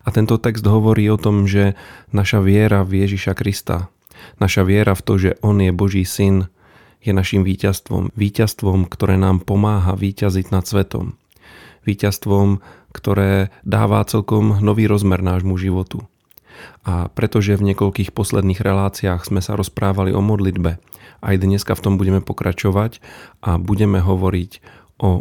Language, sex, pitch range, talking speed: Slovak, male, 95-105 Hz, 145 wpm